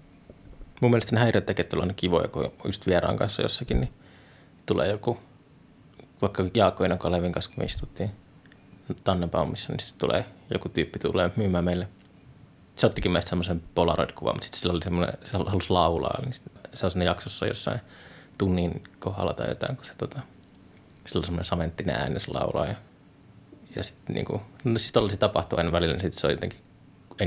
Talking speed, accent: 160 wpm, native